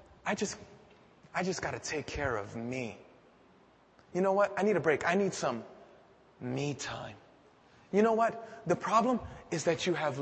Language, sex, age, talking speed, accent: English, male, 20-39, 175 wpm, American